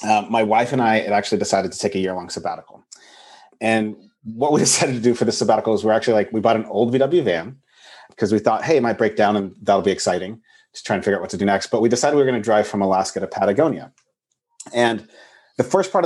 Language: English